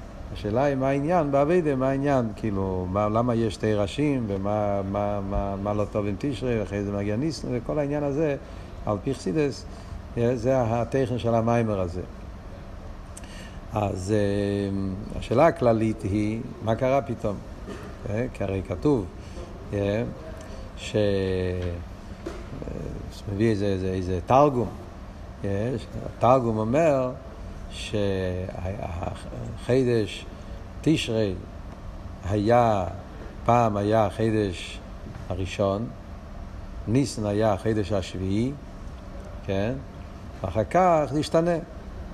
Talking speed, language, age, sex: 95 wpm, Hebrew, 50-69, male